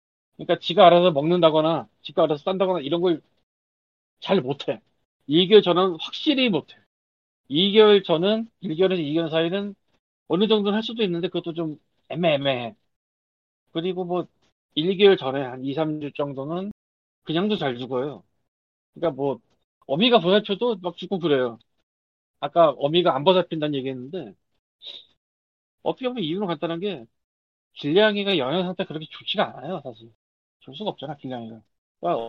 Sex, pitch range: male, 125-195 Hz